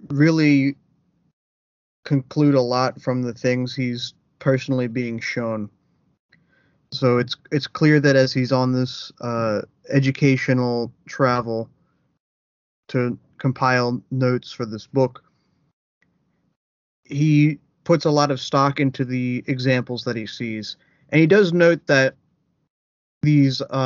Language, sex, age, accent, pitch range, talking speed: English, male, 30-49, American, 125-145 Hz, 120 wpm